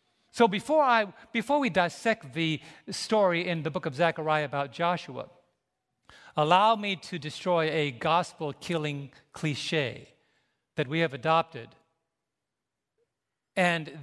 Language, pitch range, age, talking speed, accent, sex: English, 155-205 Hz, 50-69, 120 wpm, American, male